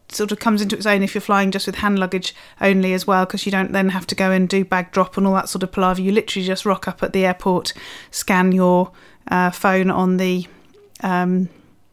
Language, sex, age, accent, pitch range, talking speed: English, female, 30-49, British, 185-215 Hz, 240 wpm